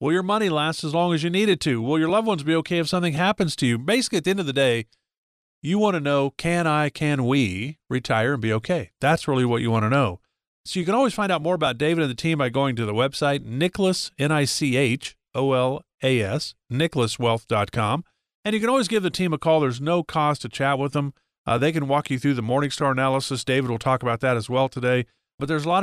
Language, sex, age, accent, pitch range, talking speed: English, male, 50-69, American, 125-170 Hz, 245 wpm